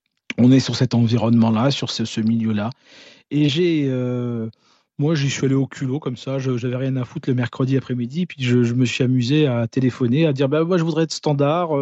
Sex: male